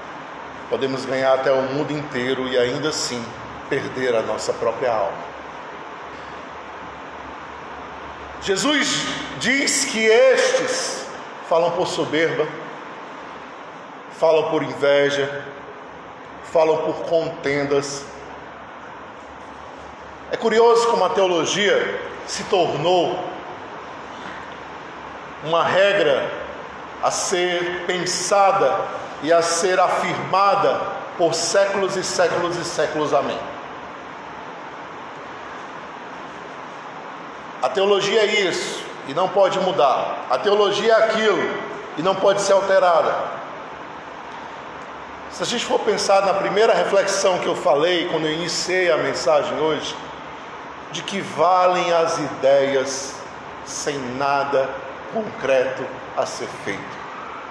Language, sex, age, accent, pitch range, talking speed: Portuguese, male, 50-69, Brazilian, 145-200 Hz, 100 wpm